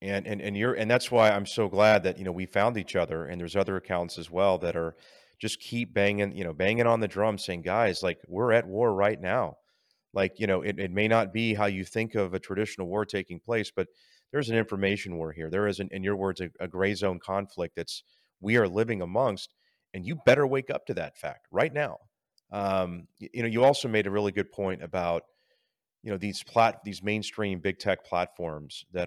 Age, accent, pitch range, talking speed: 30-49, American, 90-105 Hz, 235 wpm